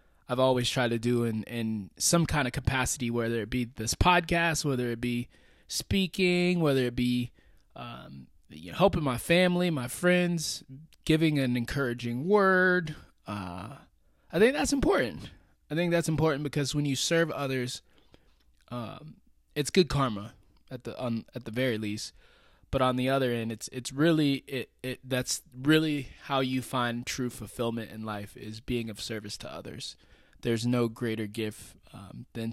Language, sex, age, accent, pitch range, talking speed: English, male, 20-39, American, 120-165 Hz, 170 wpm